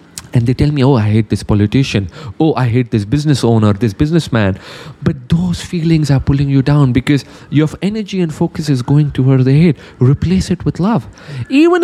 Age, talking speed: 30-49, 200 wpm